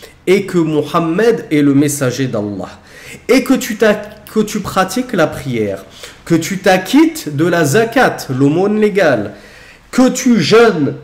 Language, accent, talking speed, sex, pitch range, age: French, French, 140 wpm, male, 150-225 Hz, 40-59